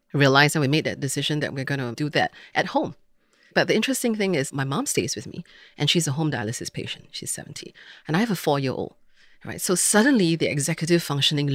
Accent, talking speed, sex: Malaysian, 225 wpm, female